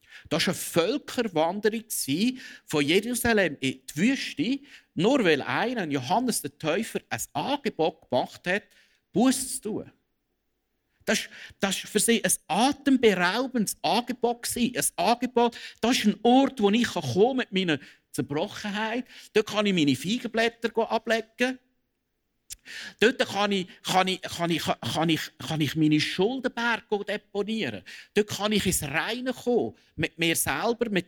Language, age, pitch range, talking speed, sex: German, 50-69, 155-230 Hz, 140 wpm, male